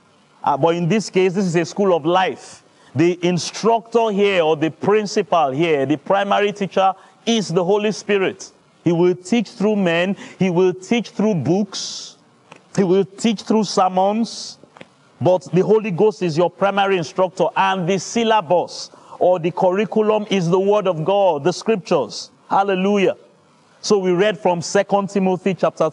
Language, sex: English, male